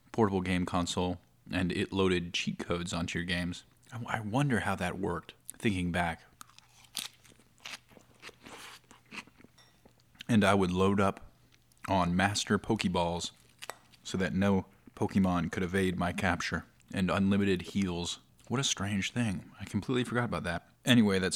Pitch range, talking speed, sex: 85-105 Hz, 135 wpm, male